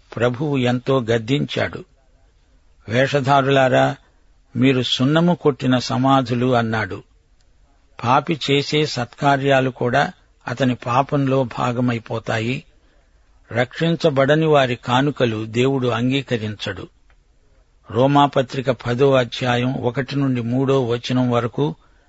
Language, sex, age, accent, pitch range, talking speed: Telugu, male, 50-69, native, 115-135 Hz, 80 wpm